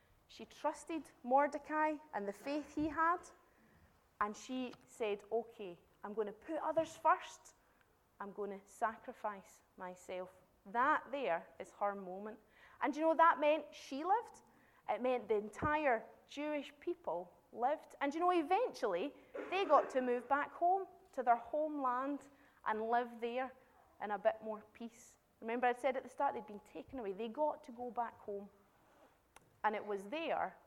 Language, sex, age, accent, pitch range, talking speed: English, female, 30-49, British, 215-310 Hz, 160 wpm